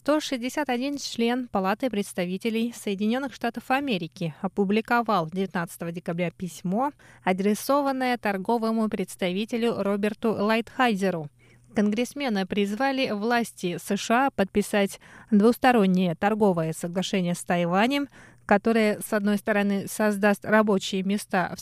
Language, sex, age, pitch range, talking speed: Russian, female, 20-39, 190-240 Hz, 95 wpm